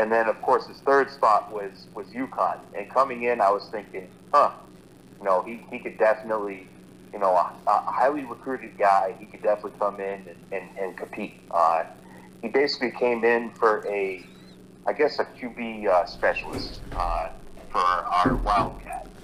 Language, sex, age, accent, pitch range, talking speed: English, male, 30-49, American, 85-115 Hz, 175 wpm